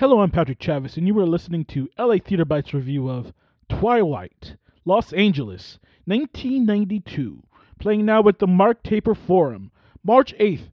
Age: 30-49